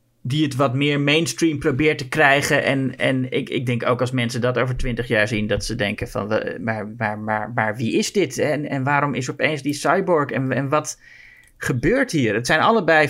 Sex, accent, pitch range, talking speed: male, Dutch, 120-150 Hz, 205 wpm